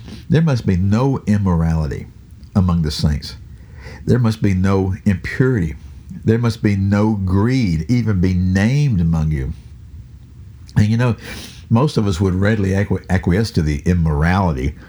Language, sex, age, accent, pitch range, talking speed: English, male, 60-79, American, 85-110 Hz, 140 wpm